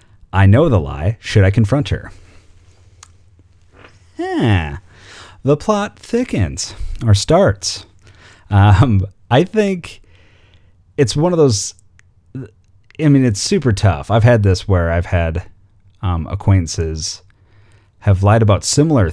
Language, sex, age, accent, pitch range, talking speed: English, male, 30-49, American, 95-110 Hz, 120 wpm